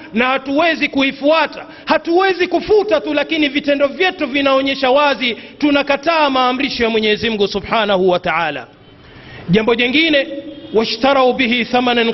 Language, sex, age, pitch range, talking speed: Swahili, male, 40-59, 250-295 Hz, 120 wpm